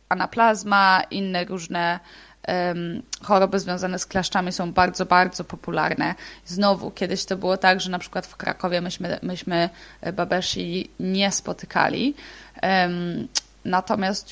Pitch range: 180-210 Hz